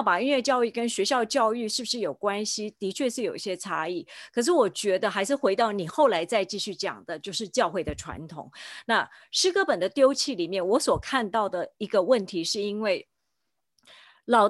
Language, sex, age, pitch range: Chinese, female, 30-49, 195-265 Hz